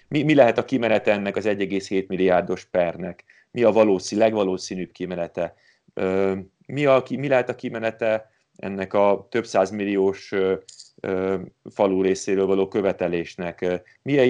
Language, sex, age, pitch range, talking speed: Hungarian, male, 30-49, 95-110 Hz, 120 wpm